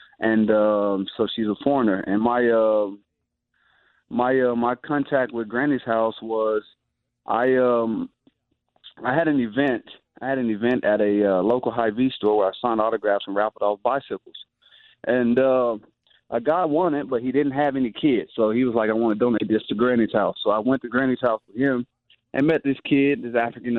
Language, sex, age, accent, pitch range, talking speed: English, male, 20-39, American, 105-120 Hz, 200 wpm